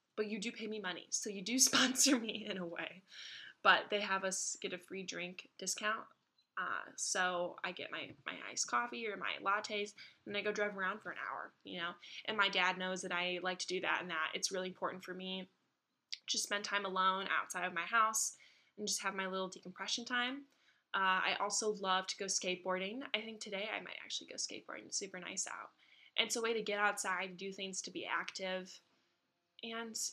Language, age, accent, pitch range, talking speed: English, 10-29, American, 185-215 Hz, 215 wpm